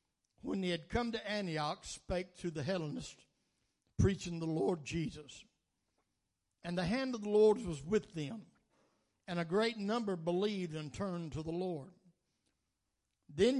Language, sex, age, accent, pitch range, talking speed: English, male, 60-79, American, 155-200 Hz, 150 wpm